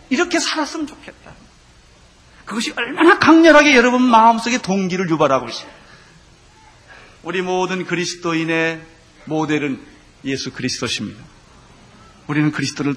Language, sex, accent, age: Korean, male, native, 30-49